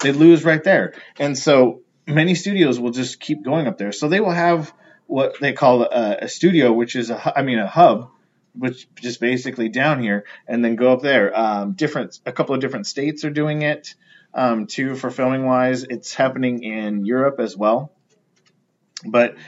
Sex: male